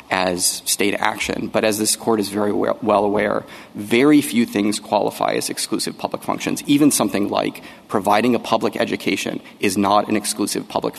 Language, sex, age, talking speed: English, male, 30-49, 170 wpm